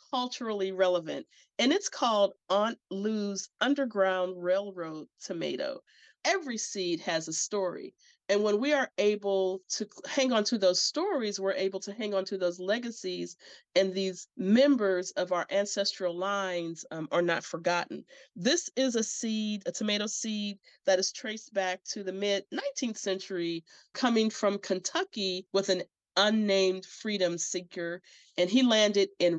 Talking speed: 145 wpm